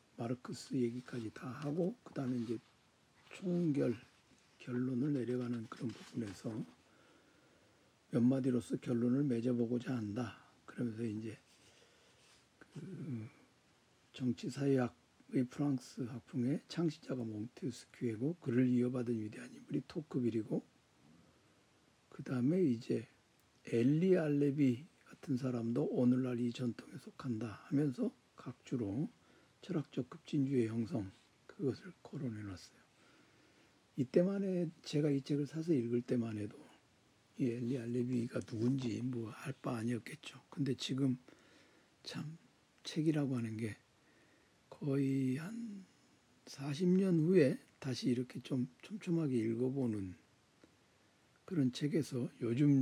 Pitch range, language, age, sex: 120-140 Hz, Korean, 60-79, male